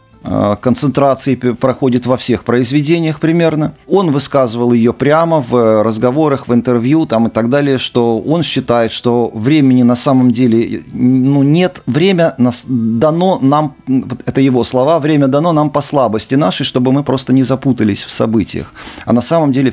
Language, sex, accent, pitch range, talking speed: Russian, male, native, 125-155 Hz, 160 wpm